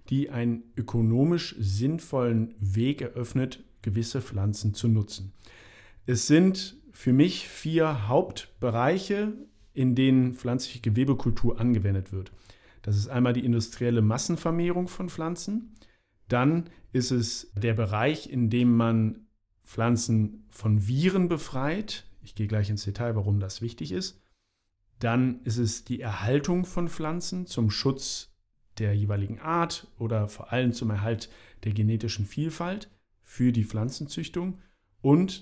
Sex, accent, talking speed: male, German, 125 wpm